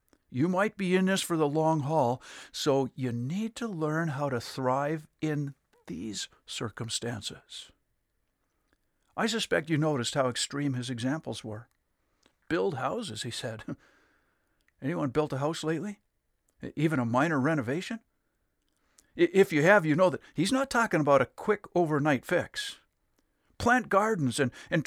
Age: 60-79